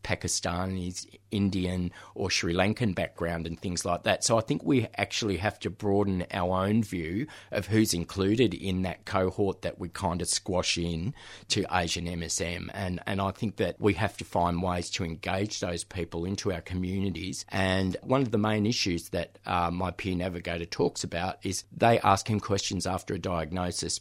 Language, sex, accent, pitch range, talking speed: English, male, Australian, 90-105 Hz, 185 wpm